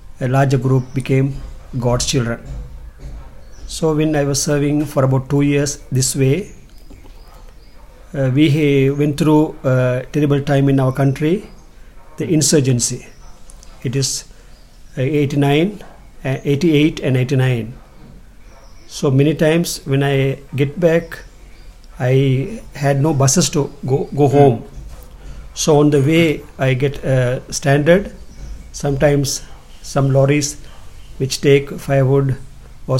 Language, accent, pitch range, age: English, Indian, 130-145 Hz, 50-69